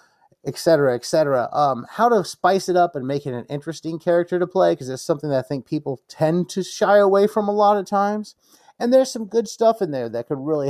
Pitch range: 140-185 Hz